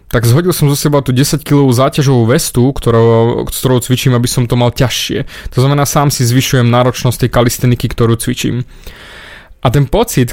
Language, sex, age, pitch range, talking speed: Slovak, male, 20-39, 120-145 Hz, 180 wpm